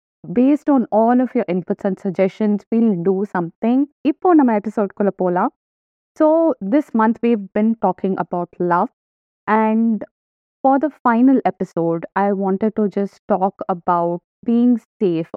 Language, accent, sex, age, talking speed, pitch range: Tamil, native, female, 20-39, 145 wpm, 190-230 Hz